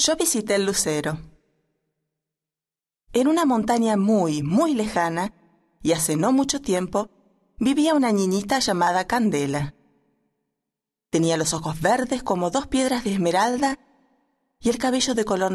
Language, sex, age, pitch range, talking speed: Spanish, female, 30-49, 150-230 Hz, 130 wpm